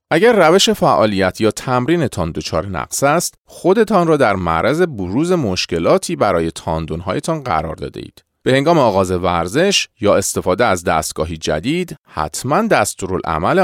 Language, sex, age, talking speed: Persian, male, 40-59, 130 wpm